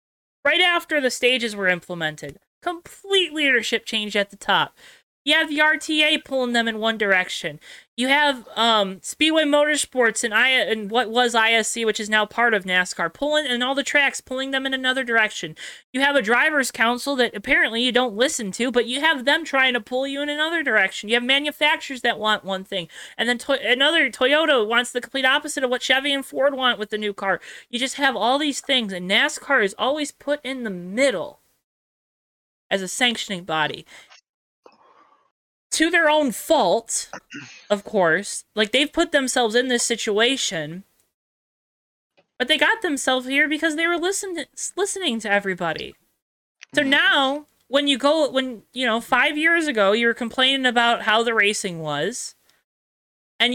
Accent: American